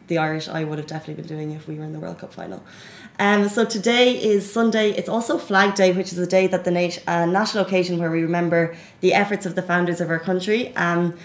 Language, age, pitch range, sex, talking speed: Arabic, 20-39, 175-210 Hz, female, 235 wpm